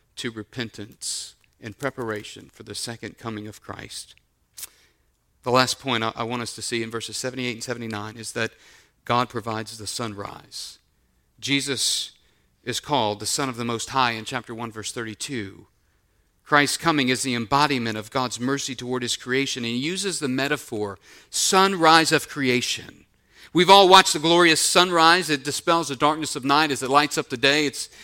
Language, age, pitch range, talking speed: English, 40-59, 115-155 Hz, 175 wpm